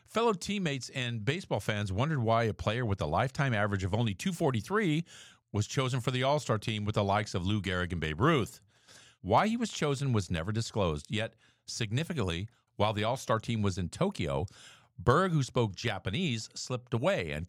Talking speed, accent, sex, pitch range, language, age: 185 wpm, American, male, 105-140 Hz, English, 50-69